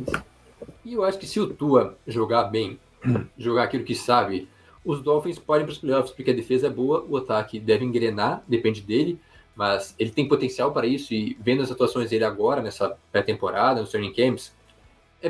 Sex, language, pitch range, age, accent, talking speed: male, Portuguese, 115-150 Hz, 20-39, Brazilian, 190 wpm